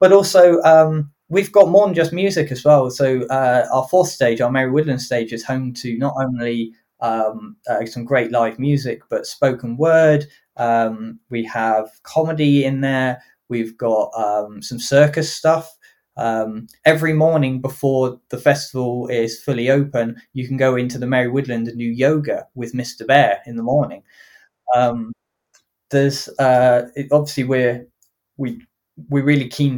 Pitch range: 120-145 Hz